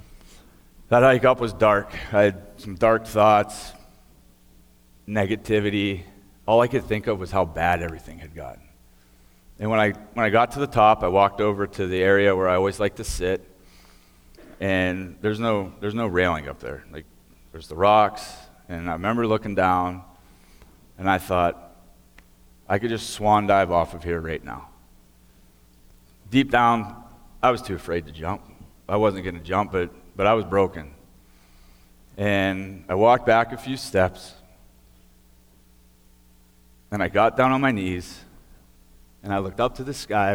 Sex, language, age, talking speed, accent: male, English, 40-59, 165 wpm, American